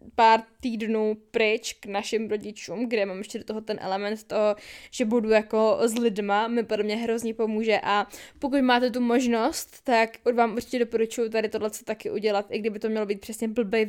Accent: native